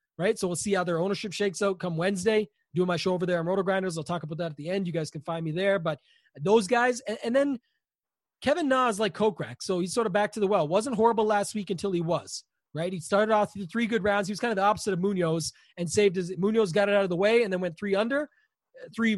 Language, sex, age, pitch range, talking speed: English, male, 30-49, 180-215 Hz, 280 wpm